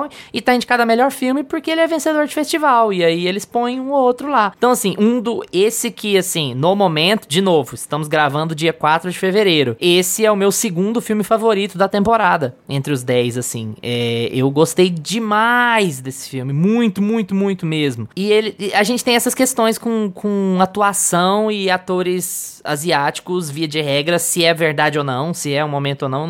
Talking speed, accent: 205 wpm, Brazilian